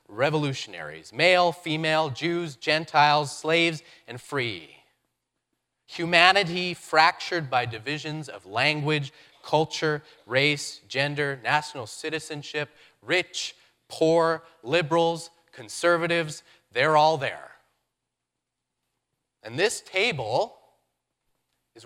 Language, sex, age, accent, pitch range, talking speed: English, male, 30-49, American, 125-160 Hz, 80 wpm